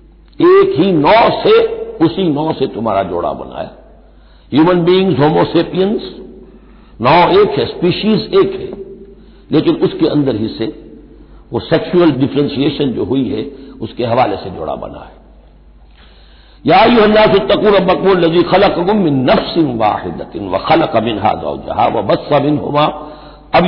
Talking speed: 140 wpm